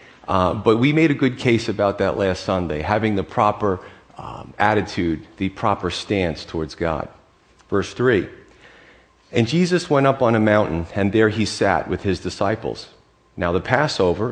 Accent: American